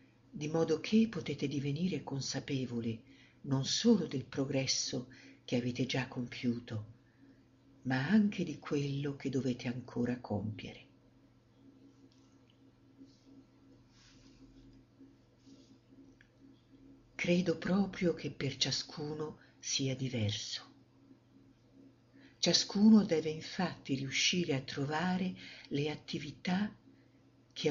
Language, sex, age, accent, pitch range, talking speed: Italian, female, 50-69, native, 130-160 Hz, 80 wpm